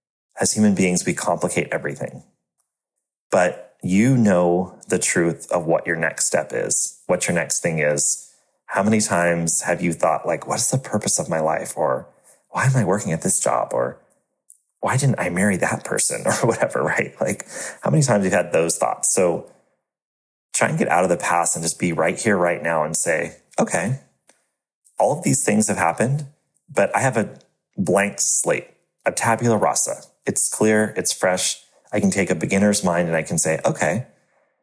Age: 30-49